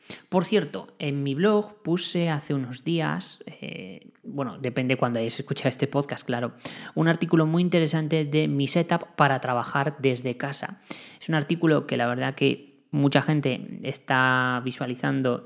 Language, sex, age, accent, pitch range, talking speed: Spanish, female, 20-39, Spanish, 135-165 Hz, 155 wpm